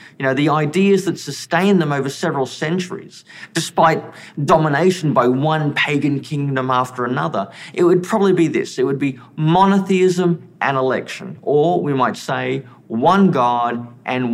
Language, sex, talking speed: English, male, 150 wpm